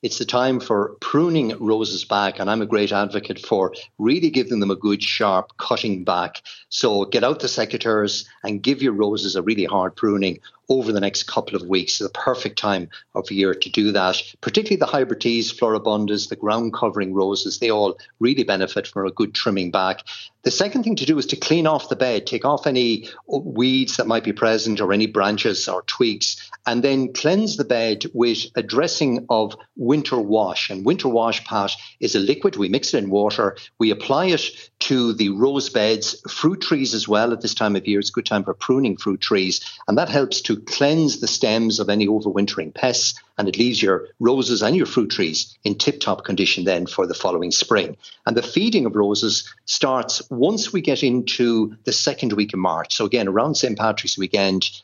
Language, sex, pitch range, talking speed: English, male, 100-130 Hz, 205 wpm